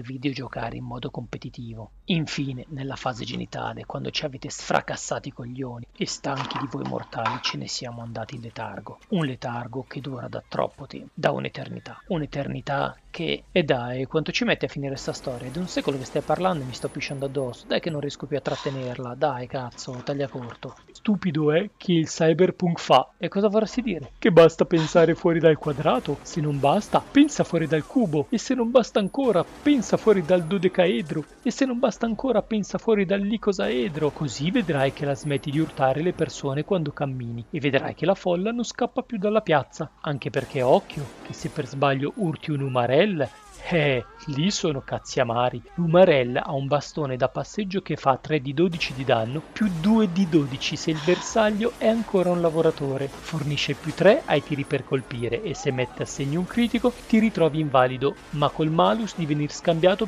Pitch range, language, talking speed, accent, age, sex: 135-180 Hz, Italian, 190 wpm, native, 40-59, male